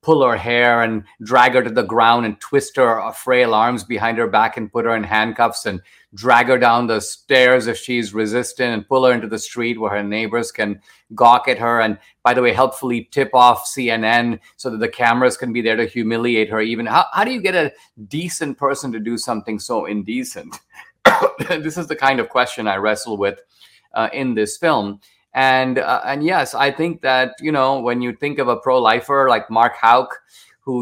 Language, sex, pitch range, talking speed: English, male, 115-135 Hz, 210 wpm